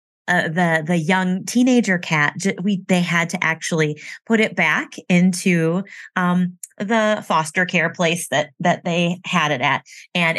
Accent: American